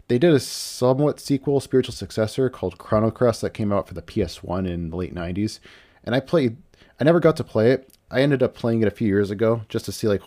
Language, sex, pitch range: English, male, 90-115 Hz